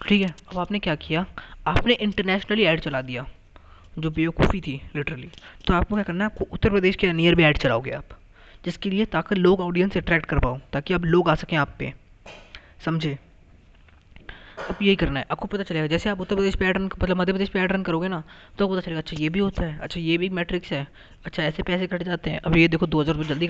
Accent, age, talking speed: native, 20-39, 225 wpm